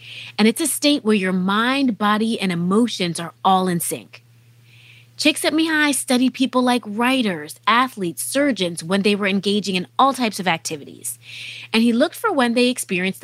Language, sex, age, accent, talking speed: English, female, 30-49, American, 175 wpm